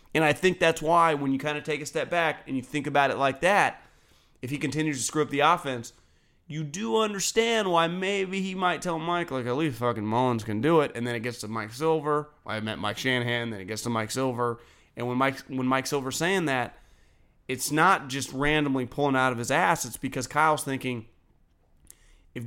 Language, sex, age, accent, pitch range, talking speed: English, male, 30-49, American, 115-150 Hz, 220 wpm